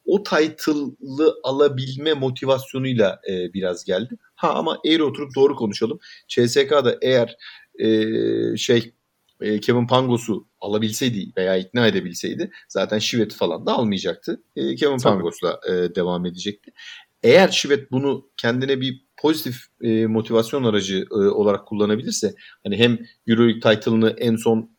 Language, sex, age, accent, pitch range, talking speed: Turkish, male, 40-59, native, 115-130 Hz, 130 wpm